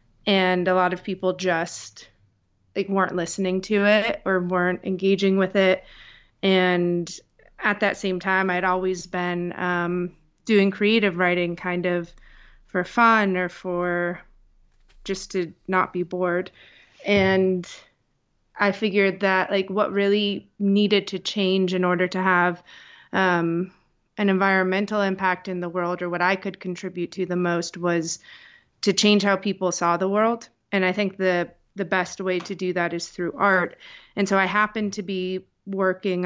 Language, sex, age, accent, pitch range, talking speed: English, female, 30-49, American, 180-195 Hz, 160 wpm